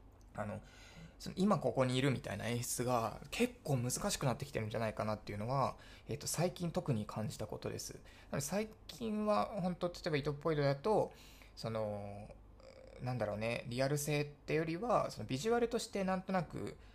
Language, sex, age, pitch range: Japanese, male, 20-39, 105-150 Hz